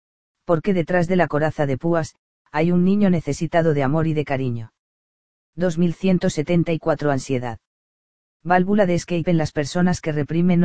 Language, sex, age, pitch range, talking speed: English, female, 40-59, 140-170 Hz, 150 wpm